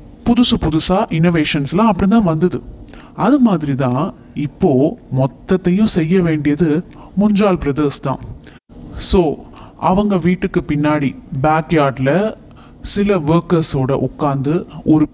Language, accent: Tamil, native